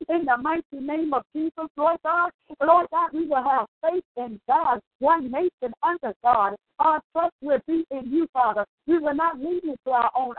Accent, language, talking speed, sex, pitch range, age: American, English, 200 wpm, female, 245-330 Hz, 50-69